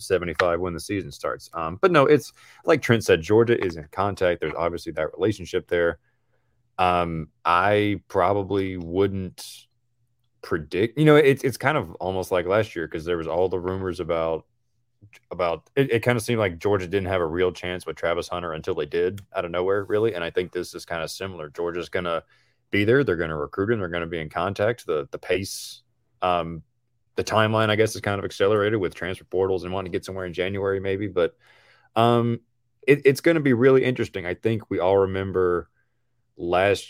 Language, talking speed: English, 205 wpm